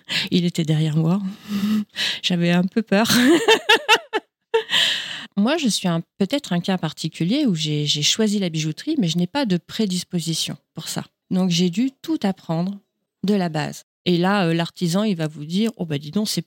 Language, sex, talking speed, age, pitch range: French, female, 195 wpm, 40-59, 165-215 Hz